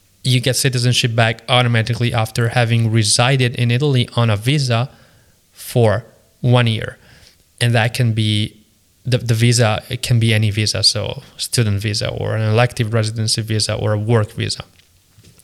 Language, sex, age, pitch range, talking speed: English, male, 20-39, 110-125 Hz, 155 wpm